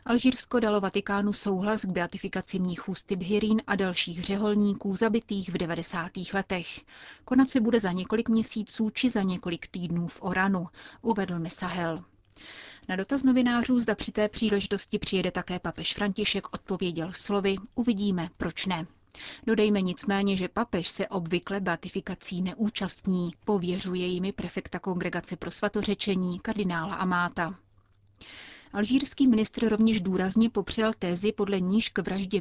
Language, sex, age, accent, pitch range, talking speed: Czech, female, 30-49, native, 180-210 Hz, 130 wpm